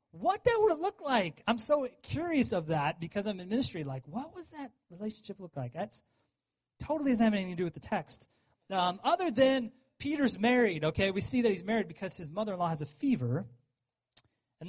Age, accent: 30-49, American